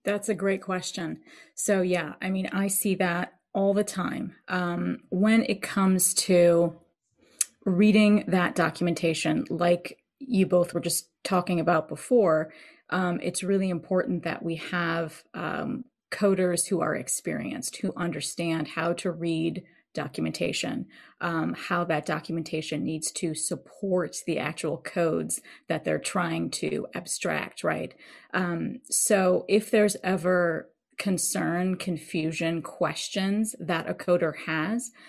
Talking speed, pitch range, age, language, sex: 130 wpm, 165-195 Hz, 30-49, English, female